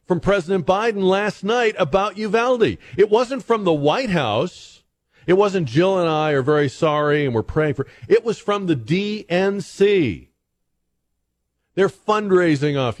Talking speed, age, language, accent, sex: 150 wpm, 50-69, English, American, male